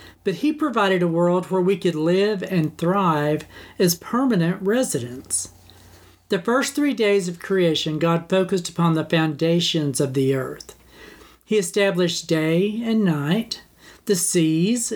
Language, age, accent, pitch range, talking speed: English, 50-69, American, 160-210 Hz, 140 wpm